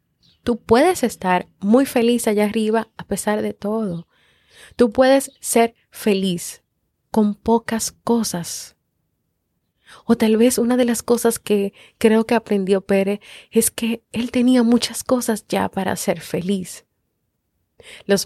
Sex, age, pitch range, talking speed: female, 30-49, 170-225 Hz, 135 wpm